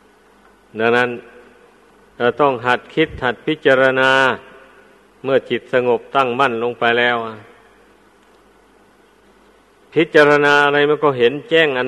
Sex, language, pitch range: male, Thai, 120-155 Hz